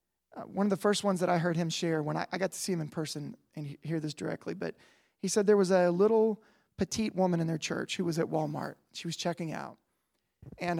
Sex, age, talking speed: male, 30-49, 245 wpm